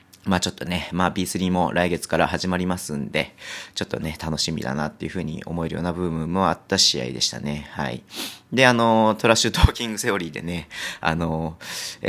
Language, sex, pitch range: Japanese, male, 80-100 Hz